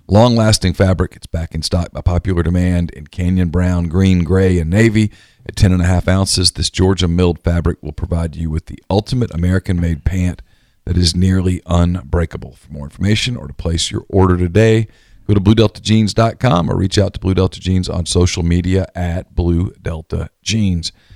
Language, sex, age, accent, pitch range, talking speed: English, male, 50-69, American, 85-100 Hz, 170 wpm